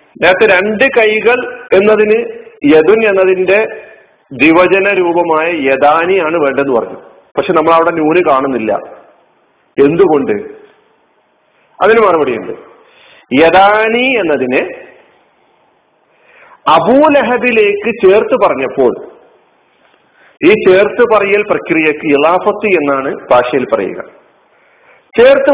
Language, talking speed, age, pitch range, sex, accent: Malayalam, 75 wpm, 40-59, 145-240 Hz, male, native